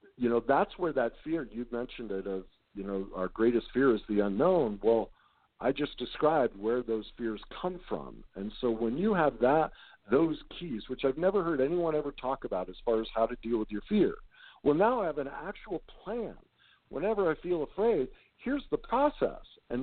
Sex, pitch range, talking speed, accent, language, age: male, 95-140 Hz, 205 wpm, American, English, 50-69